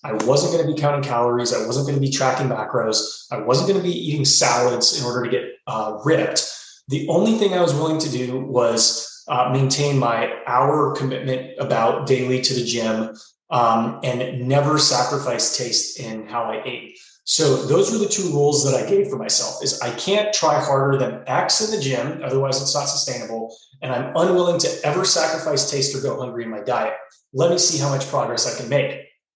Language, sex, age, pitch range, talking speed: English, male, 30-49, 130-170 Hz, 210 wpm